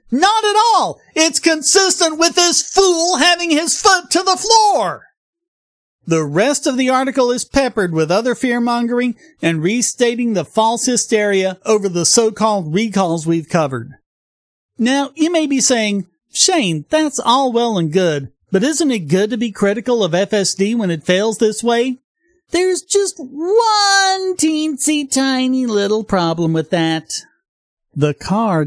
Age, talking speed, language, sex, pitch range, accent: 40-59, 150 wpm, English, male, 160-255 Hz, American